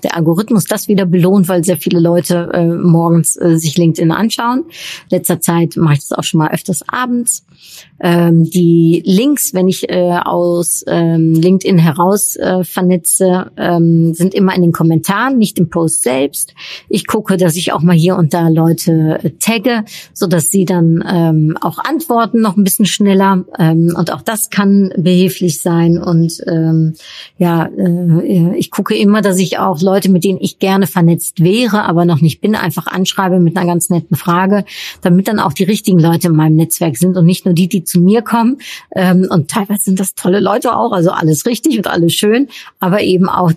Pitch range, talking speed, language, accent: 170-195 Hz, 190 wpm, German, German